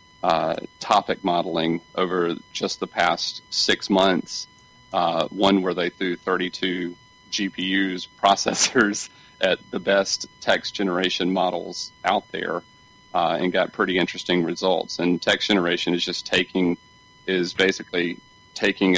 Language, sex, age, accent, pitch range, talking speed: English, male, 40-59, American, 90-100 Hz, 125 wpm